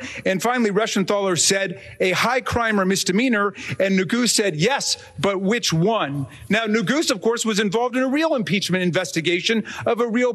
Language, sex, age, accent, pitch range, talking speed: English, male, 40-59, American, 200-245 Hz, 175 wpm